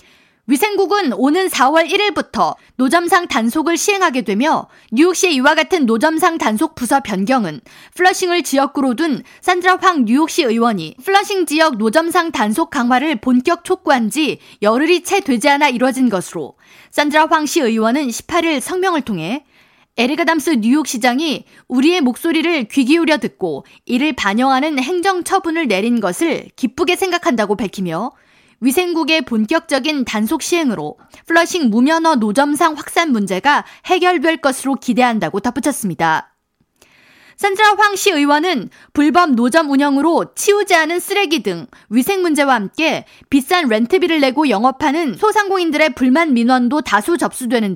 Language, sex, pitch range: Korean, female, 250-340 Hz